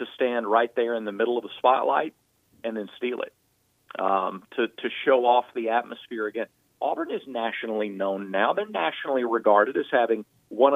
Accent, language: American, English